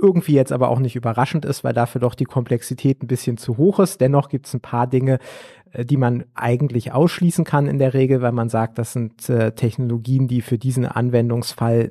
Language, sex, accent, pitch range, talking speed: German, male, German, 120-140 Hz, 210 wpm